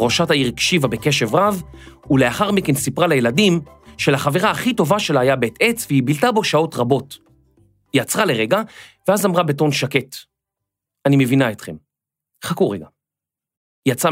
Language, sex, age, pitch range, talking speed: Hebrew, male, 40-59, 125-180 Hz, 145 wpm